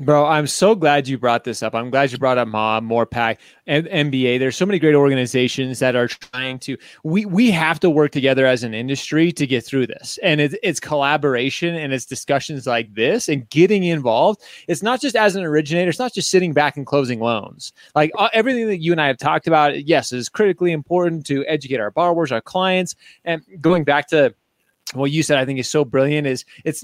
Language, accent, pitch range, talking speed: English, American, 130-170 Hz, 215 wpm